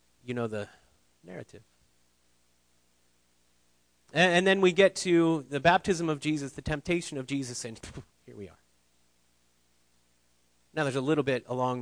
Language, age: English, 30-49